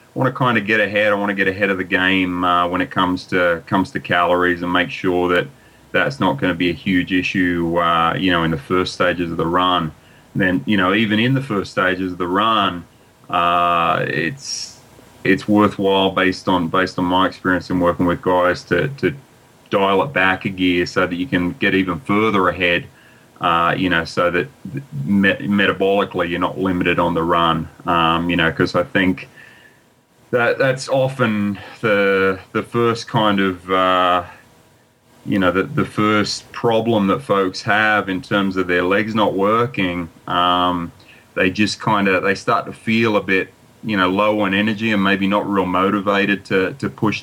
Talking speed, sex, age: 195 wpm, male, 30-49